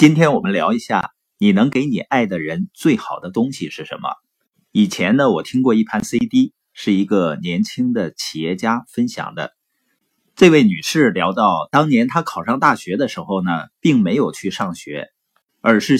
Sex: male